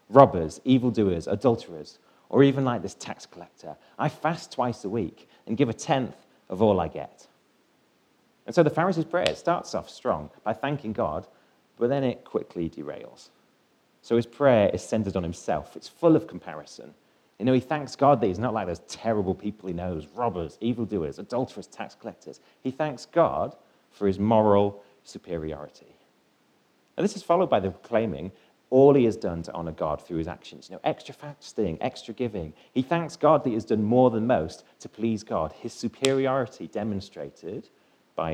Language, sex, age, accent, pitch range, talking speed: English, male, 30-49, British, 95-140 Hz, 180 wpm